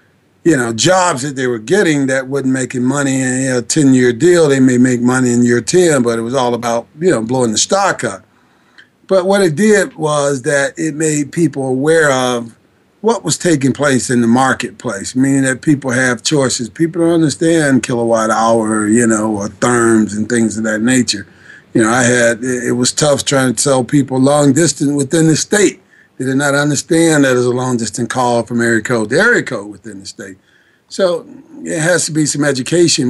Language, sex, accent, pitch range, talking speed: English, male, American, 120-155 Hz, 205 wpm